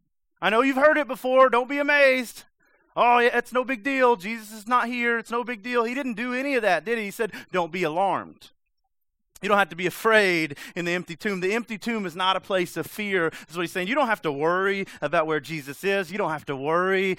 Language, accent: English, American